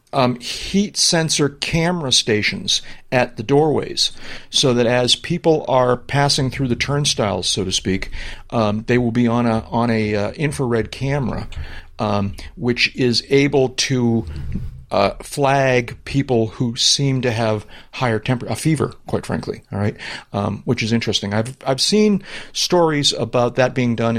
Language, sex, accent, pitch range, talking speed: English, male, American, 110-135 Hz, 155 wpm